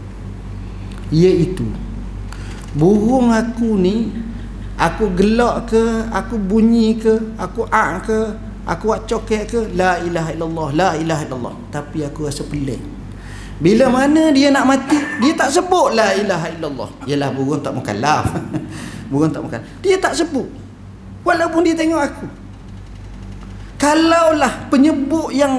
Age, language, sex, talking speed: 40-59, Malay, male, 130 wpm